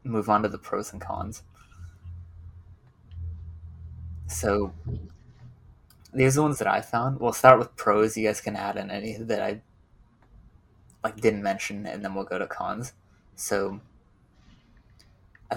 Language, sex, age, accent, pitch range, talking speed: English, male, 20-39, American, 95-120 Hz, 145 wpm